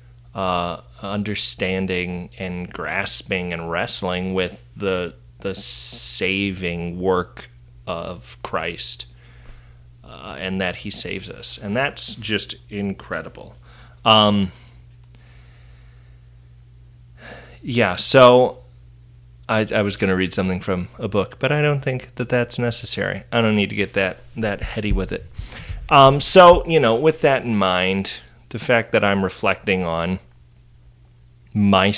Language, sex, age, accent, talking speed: English, male, 30-49, American, 130 wpm